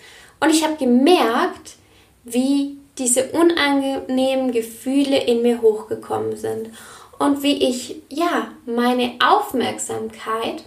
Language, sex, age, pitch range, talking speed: German, female, 10-29, 215-285 Hz, 100 wpm